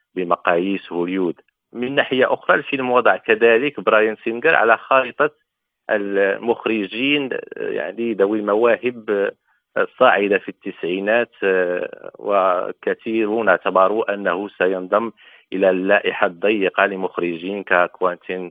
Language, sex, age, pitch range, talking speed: Arabic, male, 40-59, 95-115 Hz, 90 wpm